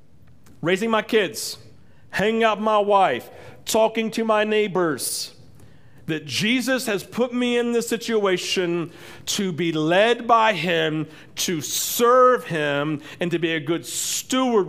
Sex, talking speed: male, 140 wpm